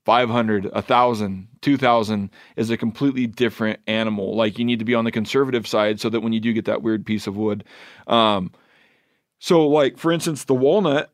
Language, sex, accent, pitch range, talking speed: English, male, American, 110-125 Hz, 190 wpm